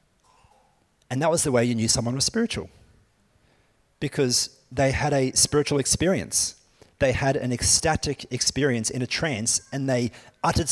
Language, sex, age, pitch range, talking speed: English, male, 30-49, 115-145 Hz, 150 wpm